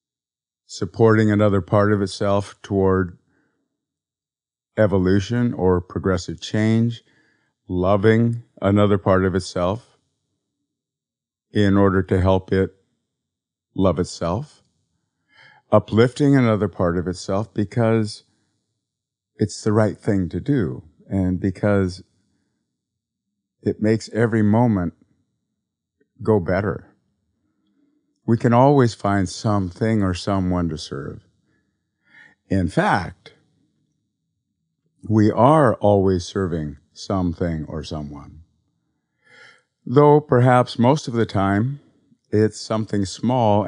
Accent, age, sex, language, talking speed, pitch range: American, 50-69, male, English, 95 wpm, 95-115 Hz